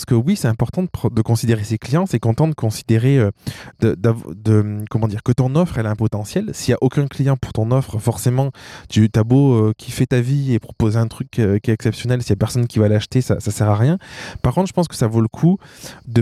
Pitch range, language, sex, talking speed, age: 105-130 Hz, French, male, 265 wpm, 20-39